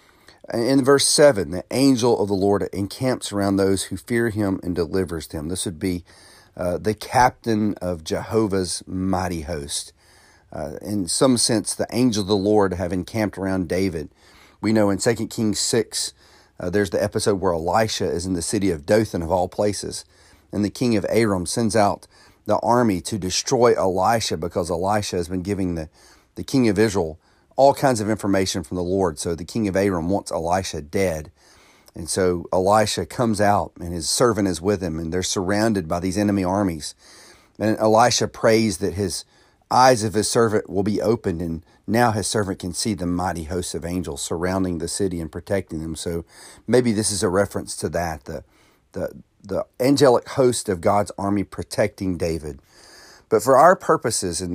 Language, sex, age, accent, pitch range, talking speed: English, male, 40-59, American, 90-110 Hz, 185 wpm